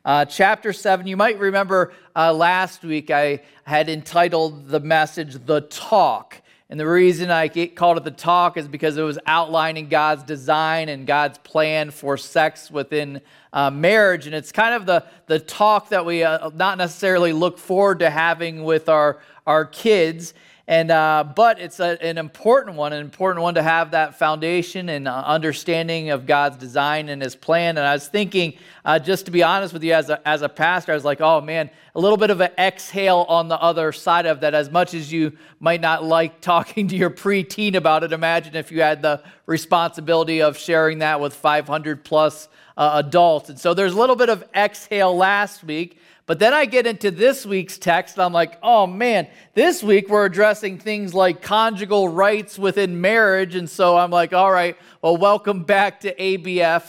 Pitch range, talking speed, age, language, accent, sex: 155-190 Hz, 195 wpm, 40-59, English, American, male